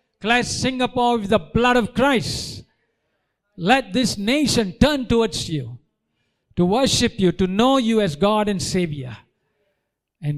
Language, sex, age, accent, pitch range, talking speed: Tamil, male, 50-69, native, 150-210 Hz, 140 wpm